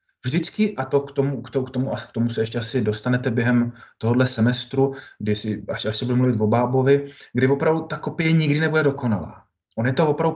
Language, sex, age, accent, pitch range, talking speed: Czech, male, 20-39, native, 110-140 Hz, 225 wpm